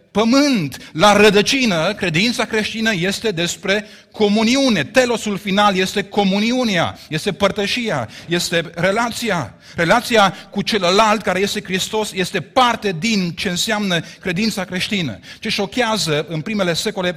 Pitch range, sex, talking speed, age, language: 185-230 Hz, male, 120 wpm, 30-49, Romanian